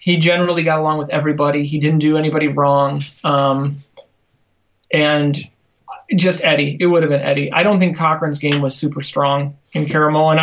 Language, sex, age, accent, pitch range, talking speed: English, male, 30-49, American, 140-165 Hz, 175 wpm